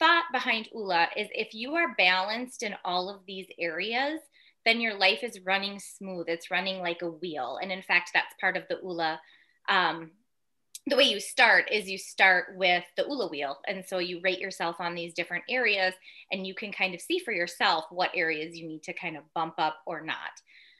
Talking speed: 210 wpm